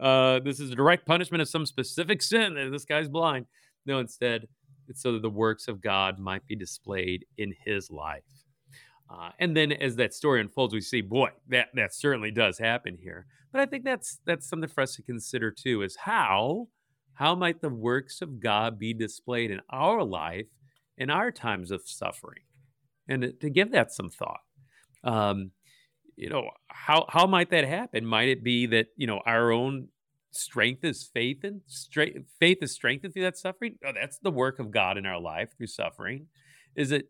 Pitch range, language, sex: 115-150 Hz, English, male